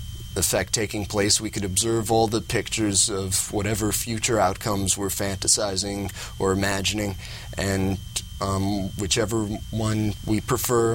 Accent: American